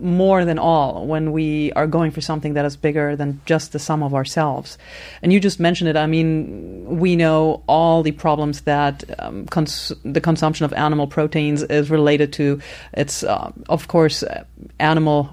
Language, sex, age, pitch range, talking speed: English, female, 30-49, 155-195 Hz, 175 wpm